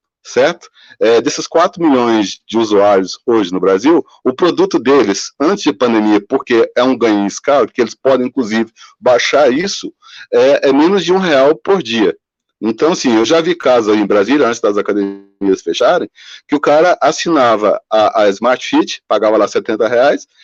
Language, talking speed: Portuguese, 175 wpm